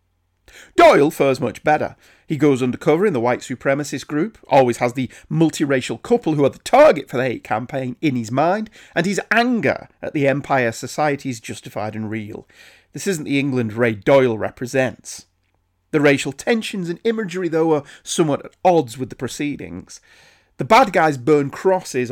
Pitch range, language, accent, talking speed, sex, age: 130-190 Hz, English, British, 175 wpm, male, 40-59